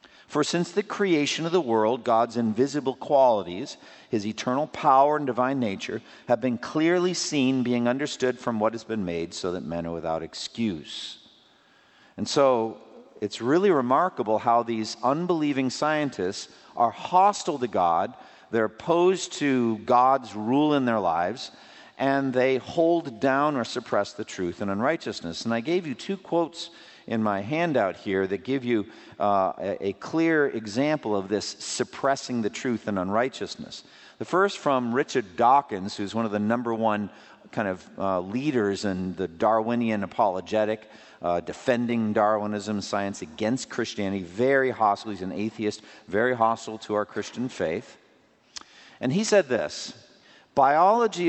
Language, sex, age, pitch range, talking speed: English, male, 50-69, 105-145 Hz, 150 wpm